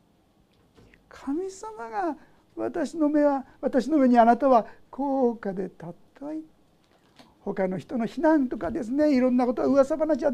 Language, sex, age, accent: Japanese, male, 50-69, native